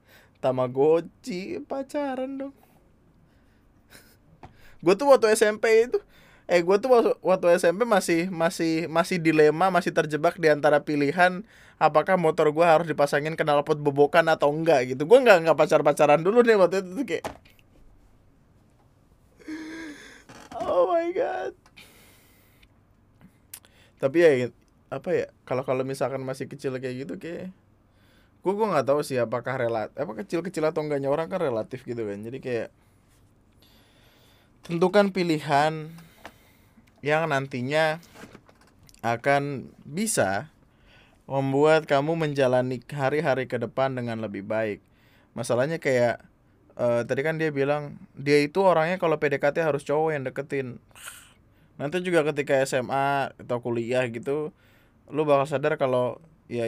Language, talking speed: Indonesian, 125 wpm